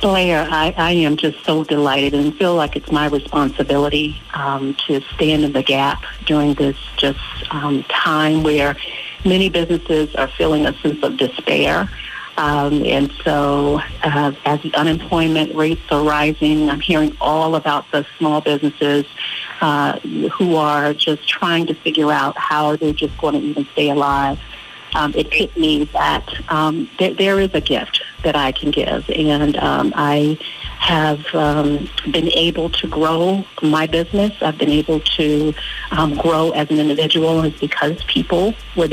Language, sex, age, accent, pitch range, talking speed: English, female, 40-59, American, 145-165 Hz, 160 wpm